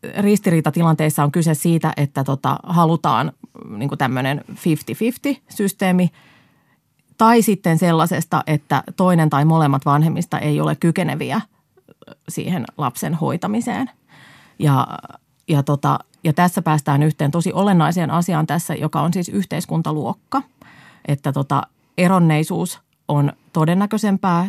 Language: Finnish